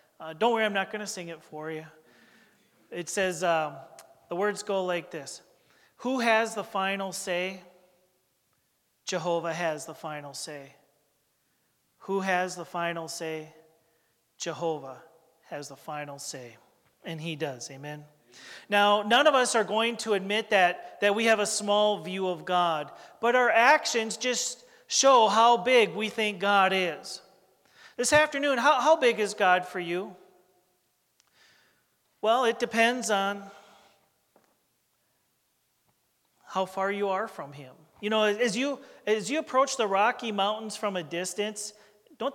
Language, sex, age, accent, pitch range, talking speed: English, male, 40-59, American, 170-225 Hz, 145 wpm